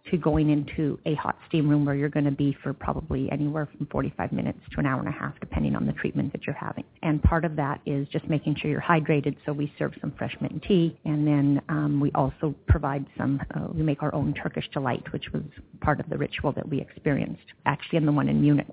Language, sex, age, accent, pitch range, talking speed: English, female, 40-59, American, 155-190 Hz, 245 wpm